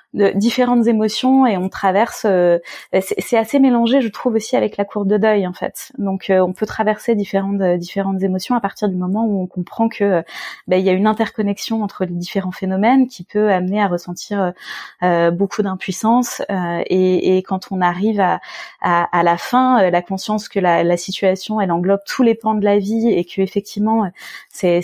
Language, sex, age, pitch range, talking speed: French, female, 20-39, 185-225 Hz, 210 wpm